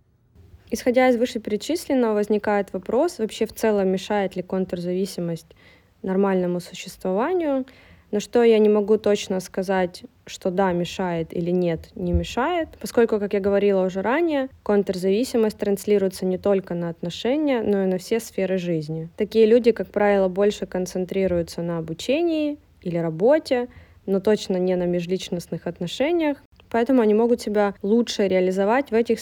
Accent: native